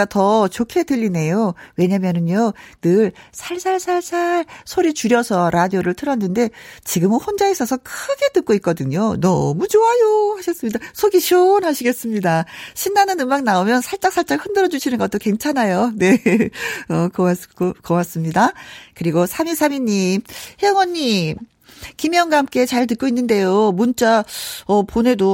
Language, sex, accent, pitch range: Korean, female, native, 185-300 Hz